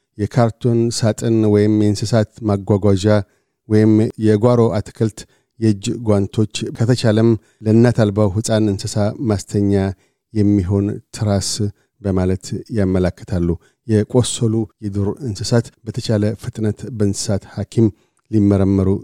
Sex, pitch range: male, 100-115 Hz